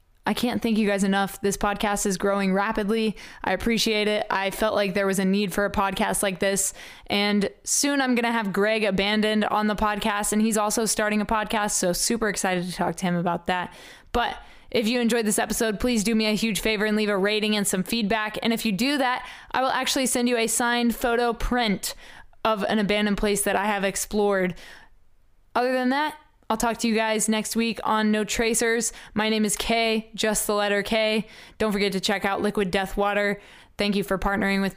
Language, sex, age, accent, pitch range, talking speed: English, female, 20-39, American, 190-220 Hz, 215 wpm